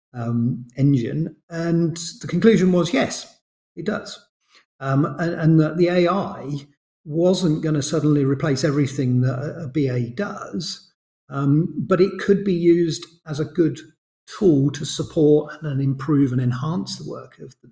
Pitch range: 130-160 Hz